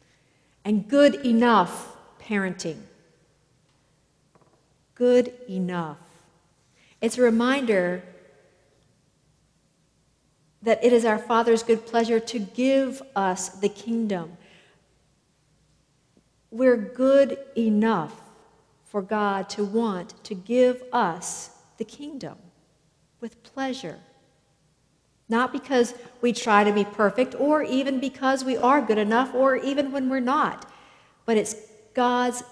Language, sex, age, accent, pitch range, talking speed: English, female, 50-69, American, 185-245 Hz, 105 wpm